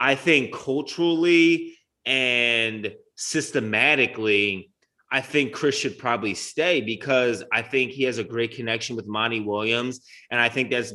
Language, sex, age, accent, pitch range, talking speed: English, male, 20-39, American, 115-140 Hz, 140 wpm